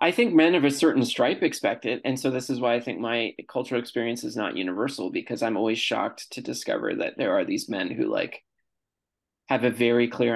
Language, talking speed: English, 225 wpm